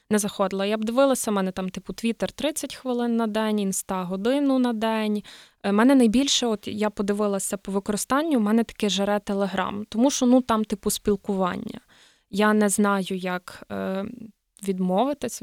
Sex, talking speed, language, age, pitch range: female, 155 wpm, Ukrainian, 20-39, 195-230 Hz